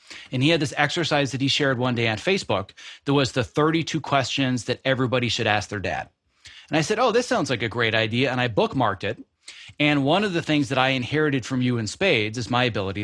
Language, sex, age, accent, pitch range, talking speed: English, male, 30-49, American, 115-155 Hz, 240 wpm